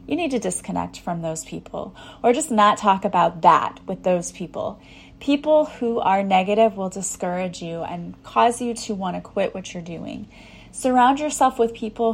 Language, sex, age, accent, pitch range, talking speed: English, female, 30-49, American, 175-220 Hz, 185 wpm